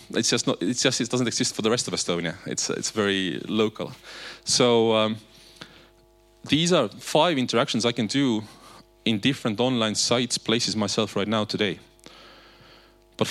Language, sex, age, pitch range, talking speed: English, male, 30-49, 100-125 Hz, 160 wpm